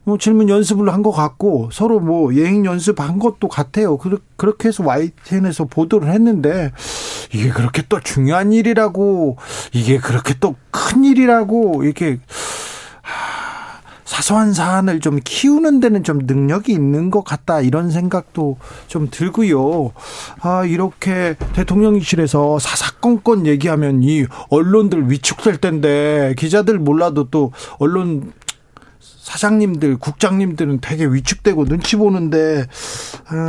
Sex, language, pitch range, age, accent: male, Korean, 145-200 Hz, 40-59, native